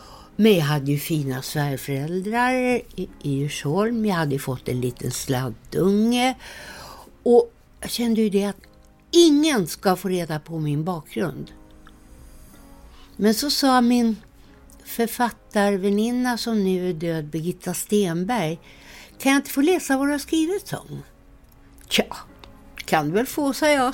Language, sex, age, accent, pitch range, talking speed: Swedish, female, 60-79, native, 170-255 Hz, 135 wpm